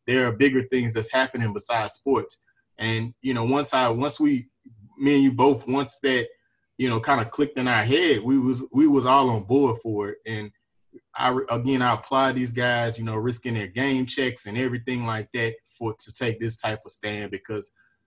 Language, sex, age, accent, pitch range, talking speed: English, male, 20-39, American, 115-135 Hz, 210 wpm